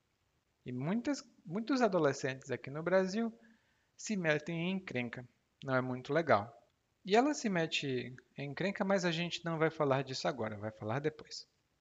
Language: Portuguese